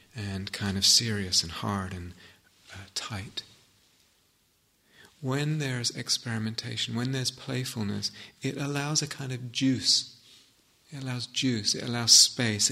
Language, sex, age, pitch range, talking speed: English, male, 40-59, 105-125 Hz, 125 wpm